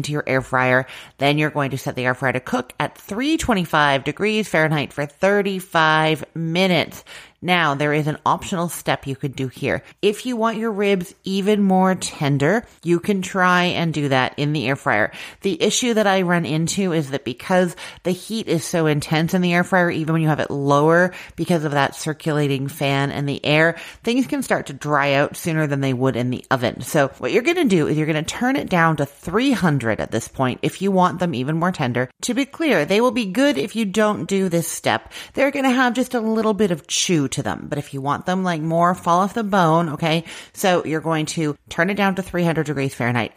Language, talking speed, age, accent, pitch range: English, 225 wpm, 30-49, American, 140-190 Hz